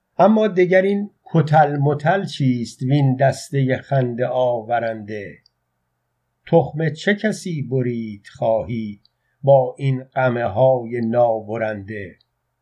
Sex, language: male, Persian